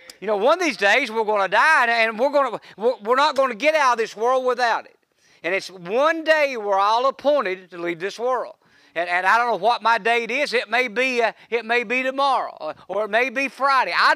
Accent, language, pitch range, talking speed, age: American, English, 200-275 Hz, 240 wpm, 50-69